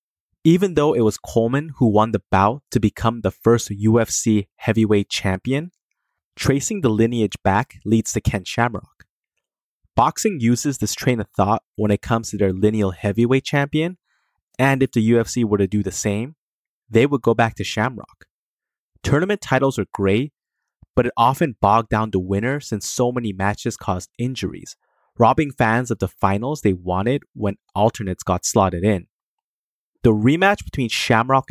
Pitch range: 100-125 Hz